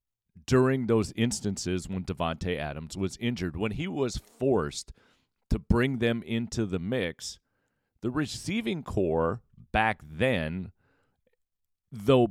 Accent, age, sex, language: American, 40-59, male, English